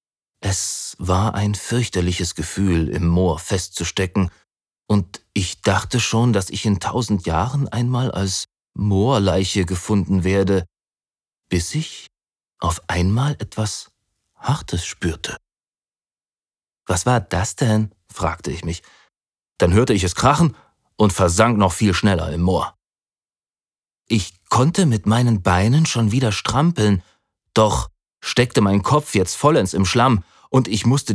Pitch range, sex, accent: 90-120 Hz, male, German